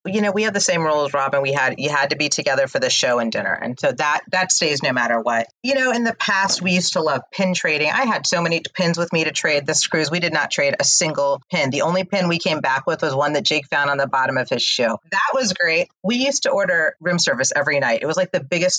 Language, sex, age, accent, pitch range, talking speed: English, female, 30-49, American, 145-210 Hz, 290 wpm